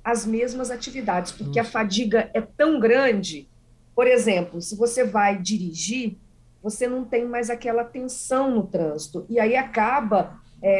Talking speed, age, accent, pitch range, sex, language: 150 wpm, 40-59, Brazilian, 185-255 Hz, female, Portuguese